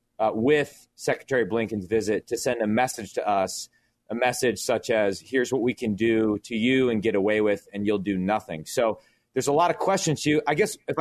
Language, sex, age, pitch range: English, male, 30-49, 120-160 Hz